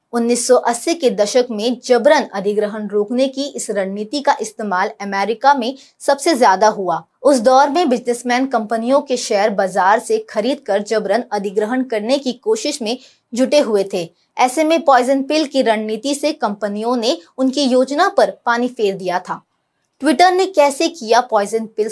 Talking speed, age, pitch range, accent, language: 160 wpm, 20-39, 220-285 Hz, native, Hindi